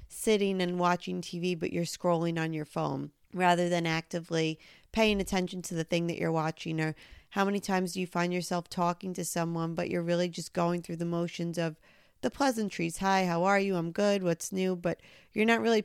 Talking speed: 210 wpm